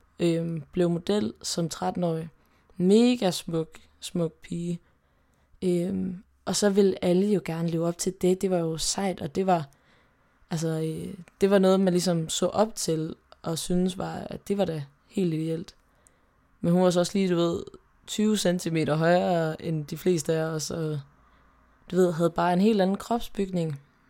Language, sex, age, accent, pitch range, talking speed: Danish, female, 20-39, native, 160-185 Hz, 175 wpm